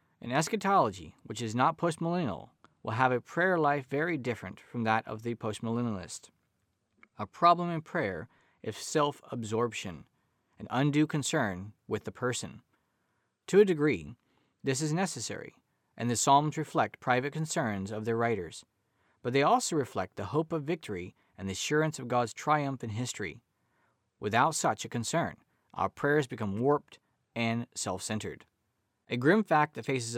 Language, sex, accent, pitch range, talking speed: English, male, American, 110-155 Hz, 150 wpm